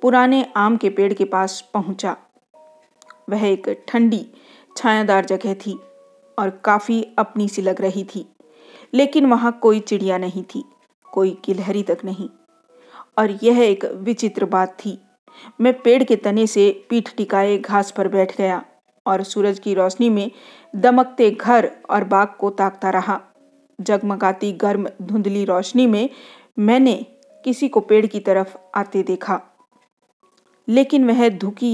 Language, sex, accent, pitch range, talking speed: Hindi, female, native, 195-245 Hz, 140 wpm